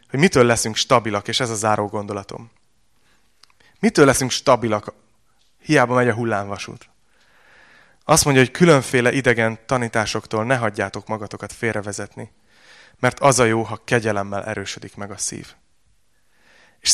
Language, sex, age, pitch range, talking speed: Hungarian, male, 30-49, 110-135 Hz, 130 wpm